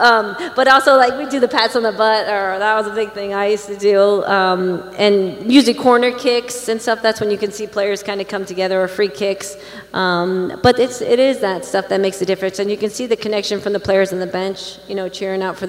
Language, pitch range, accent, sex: English, 185-215 Hz, American, female